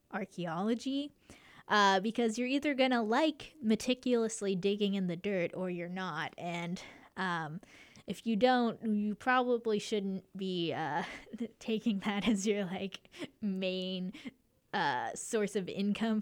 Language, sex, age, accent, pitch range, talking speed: English, female, 10-29, American, 175-215 Hz, 130 wpm